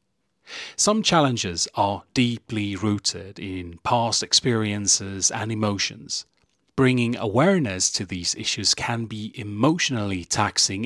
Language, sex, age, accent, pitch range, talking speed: English, male, 30-49, British, 105-135 Hz, 105 wpm